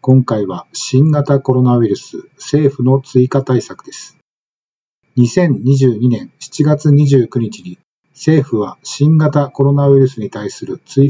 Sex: male